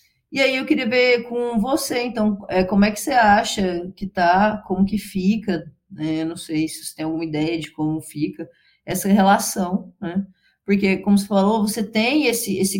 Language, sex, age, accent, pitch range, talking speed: Portuguese, female, 20-39, Brazilian, 170-210 Hz, 190 wpm